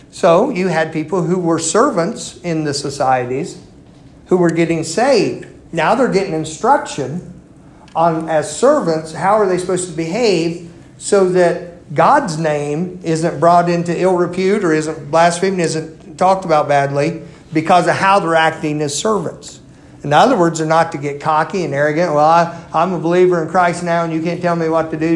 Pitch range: 155-185 Hz